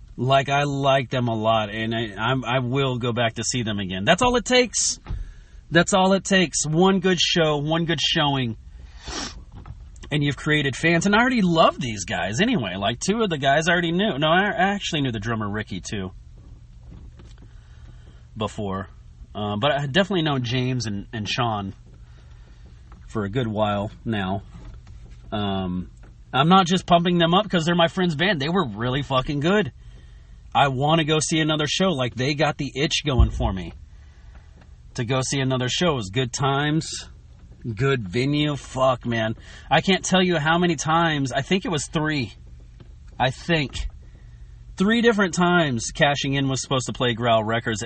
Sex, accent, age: male, American, 30-49